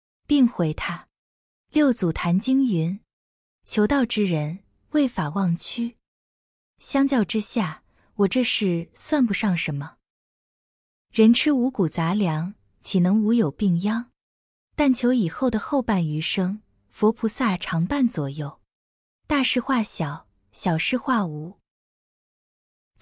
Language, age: Chinese, 20-39